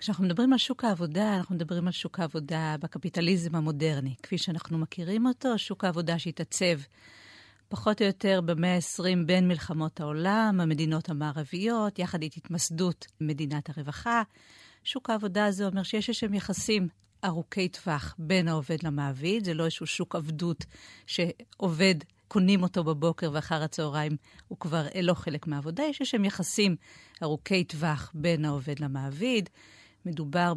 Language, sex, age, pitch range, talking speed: Hebrew, female, 50-69, 155-195 Hz, 130 wpm